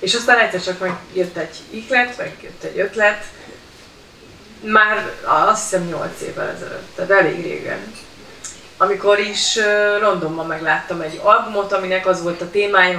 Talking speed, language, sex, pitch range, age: 145 wpm, Hungarian, female, 175-230 Hz, 30-49